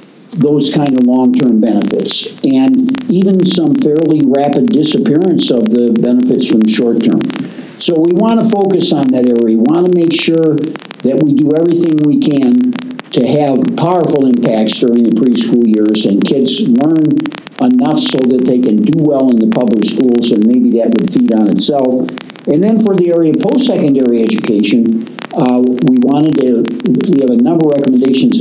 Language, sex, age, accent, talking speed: English, male, 60-79, American, 175 wpm